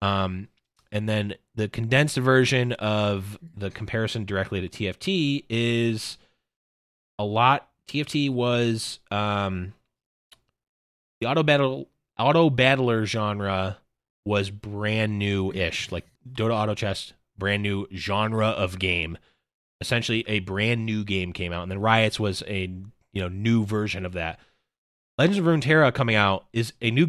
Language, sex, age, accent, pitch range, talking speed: English, male, 20-39, American, 100-125 Hz, 150 wpm